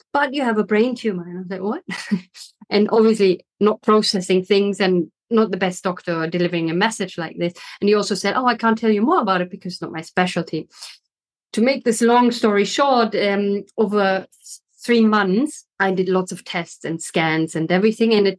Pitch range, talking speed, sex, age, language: 185-230 Hz, 210 wpm, female, 30-49, English